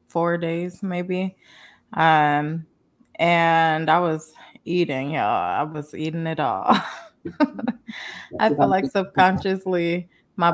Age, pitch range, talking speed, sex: 20-39, 165-195 Hz, 110 wpm, female